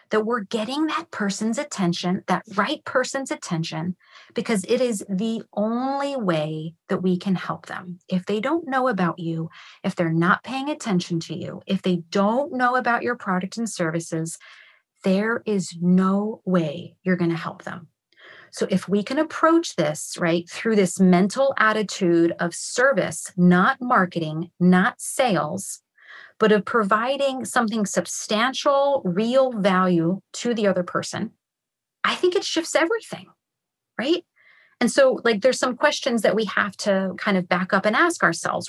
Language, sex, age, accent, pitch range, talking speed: English, female, 30-49, American, 180-255 Hz, 160 wpm